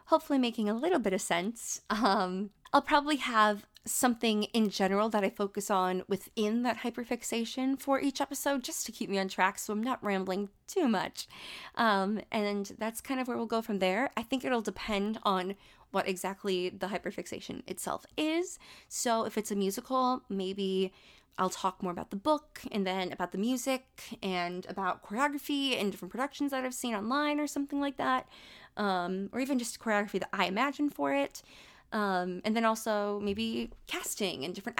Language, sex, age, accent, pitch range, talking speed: English, female, 20-39, American, 190-240 Hz, 185 wpm